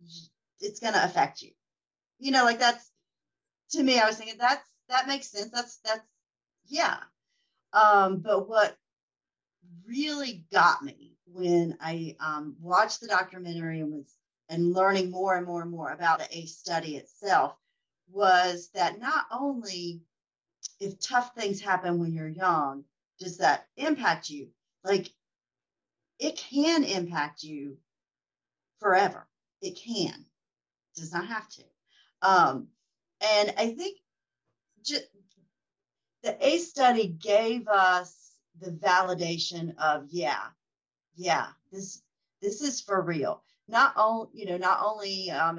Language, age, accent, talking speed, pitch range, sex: English, 40-59, American, 135 wpm, 165-225 Hz, female